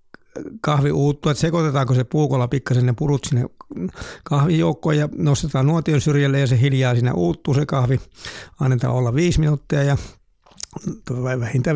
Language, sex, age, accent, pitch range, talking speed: Finnish, male, 60-79, native, 130-155 Hz, 135 wpm